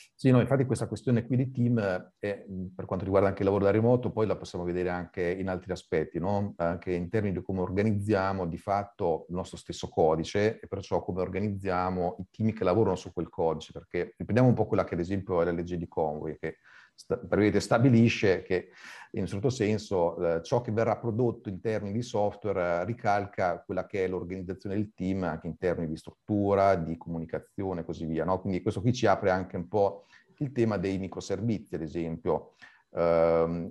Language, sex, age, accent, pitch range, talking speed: Italian, male, 40-59, native, 90-110 Hz, 200 wpm